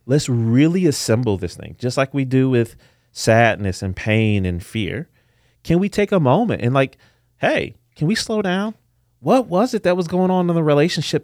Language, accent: English, American